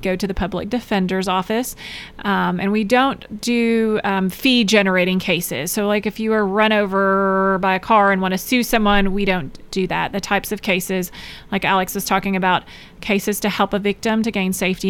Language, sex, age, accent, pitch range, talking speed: English, female, 30-49, American, 190-220 Hz, 205 wpm